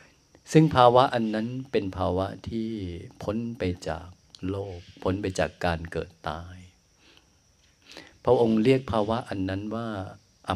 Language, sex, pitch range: Thai, male, 85-110 Hz